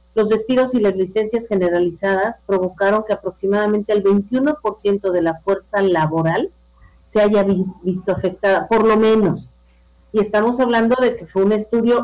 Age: 40-59